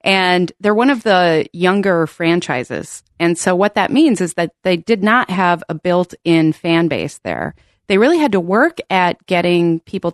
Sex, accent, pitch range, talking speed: female, American, 160-190 Hz, 185 wpm